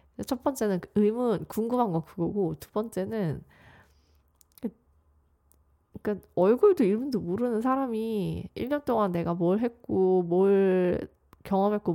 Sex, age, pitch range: female, 20-39, 165-225 Hz